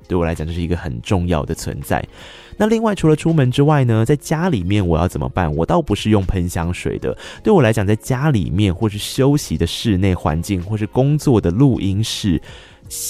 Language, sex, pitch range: Chinese, male, 85-120 Hz